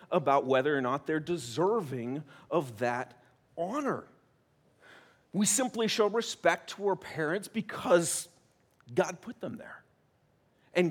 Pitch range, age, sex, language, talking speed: 140-215 Hz, 40-59, male, English, 120 wpm